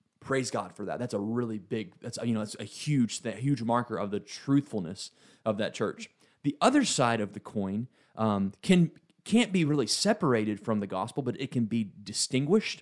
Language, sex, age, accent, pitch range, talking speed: English, male, 30-49, American, 100-125 Hz, 200 wpm